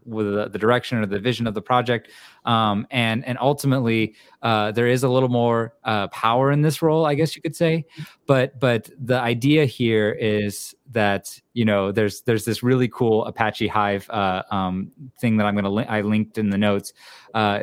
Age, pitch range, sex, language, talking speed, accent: 30-49, 105-125 Hz, male, English, 200 wpm, American